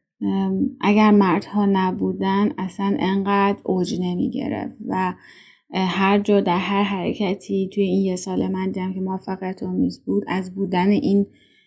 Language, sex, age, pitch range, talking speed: Persian, female, 30-49, 180-220 Hz, 130 wpm